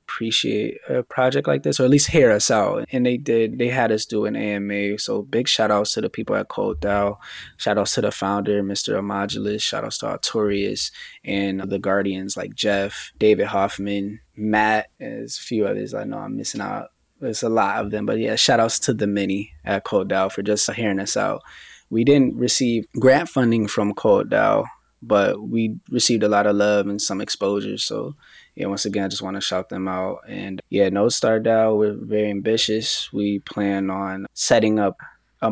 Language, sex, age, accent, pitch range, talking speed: English, male, 10-29, American, 100-110 Hz, 205 wpm